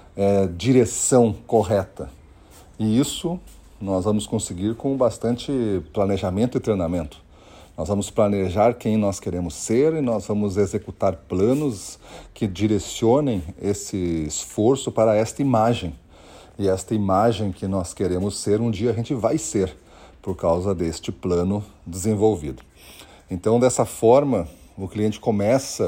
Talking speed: 130 wpm